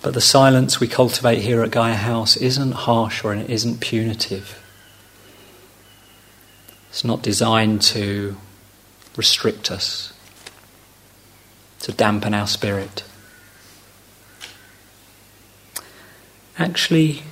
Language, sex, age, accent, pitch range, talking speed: English, male, 40-59, British, 100-115 Hz, 90 wpm